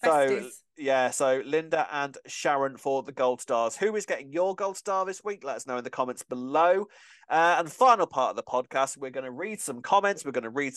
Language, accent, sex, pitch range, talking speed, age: English, British, male, 125-160 Hz, 235 wpm, 30-49